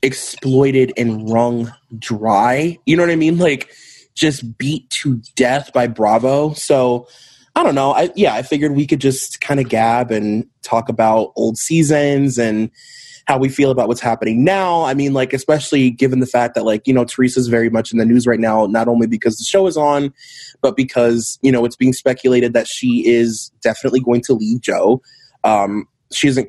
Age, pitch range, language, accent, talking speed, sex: 20-39, 120-145 Hz, English, American, 195 wpm, male